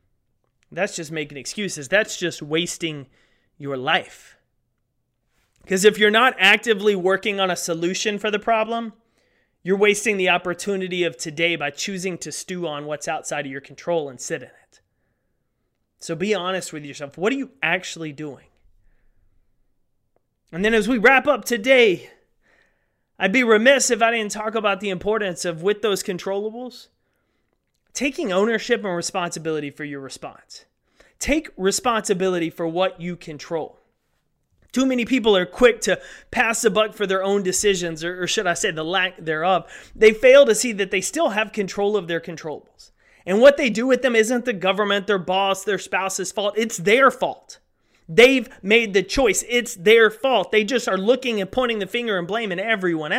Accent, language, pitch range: American, English, 165-220 Hz